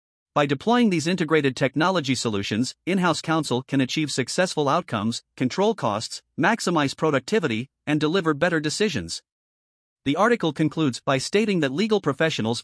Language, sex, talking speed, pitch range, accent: English, male, 135 wpm, 125-170 Hz, American